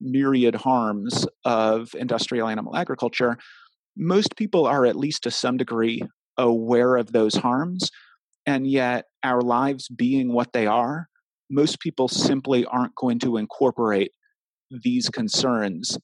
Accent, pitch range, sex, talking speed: American, 110-135 Hz, male, 130 wpm